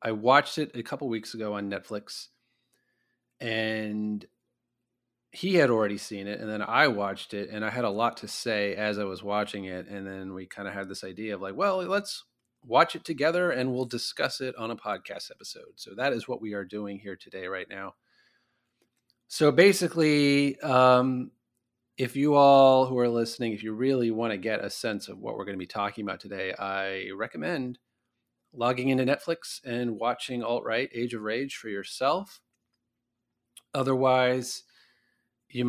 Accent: American